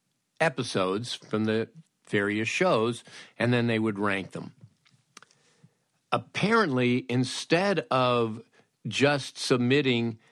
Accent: American